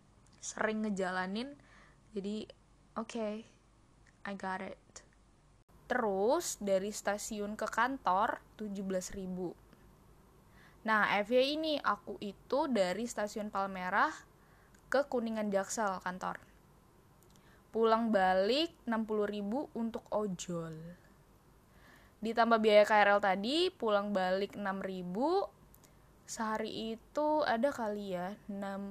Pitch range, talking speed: 195-230 Hz, 90 wpm